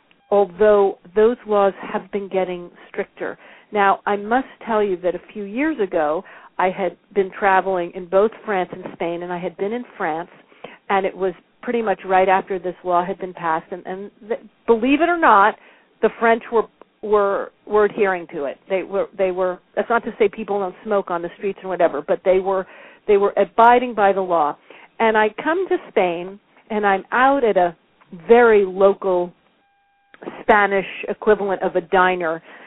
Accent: American